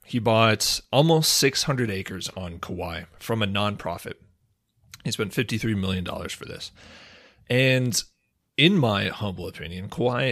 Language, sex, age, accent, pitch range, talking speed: English, male, 30-49, American, 95-115 Hz, 130 wpm